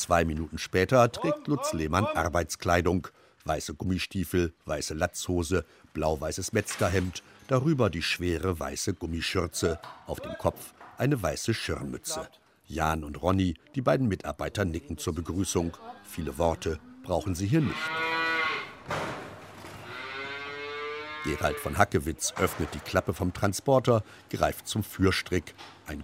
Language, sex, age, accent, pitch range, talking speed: German, male, 60-79, German, 85-115 Hz, 120 wpm